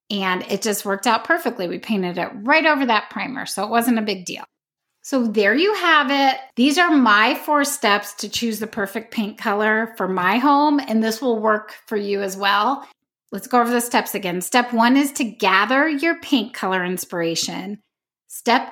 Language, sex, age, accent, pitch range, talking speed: English, female, 30-49, American, 200-275 Hz, 200 wpm